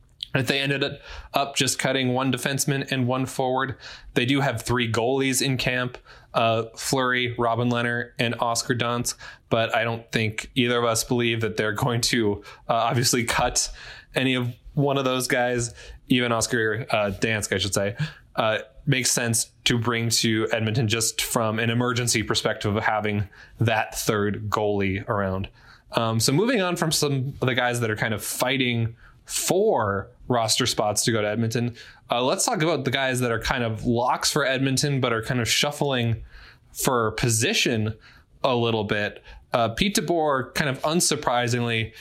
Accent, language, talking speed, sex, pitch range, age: American, English, 170 wpm, male, 115-135 Hz, 20-39